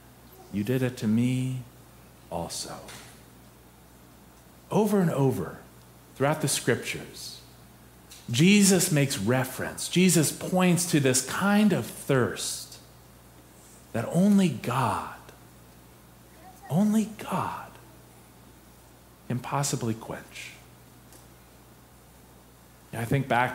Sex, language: male, English